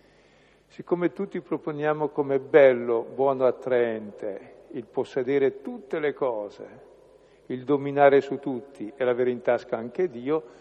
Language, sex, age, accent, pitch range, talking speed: Italian, male, 50-69, native, 120-160 Hz, 125 wpm